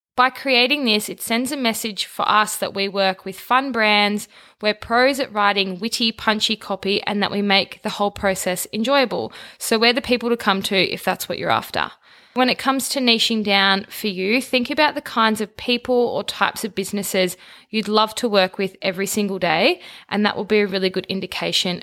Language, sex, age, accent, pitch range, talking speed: English, female, 20-39, Australian, 195-245 Hz, 210 wpm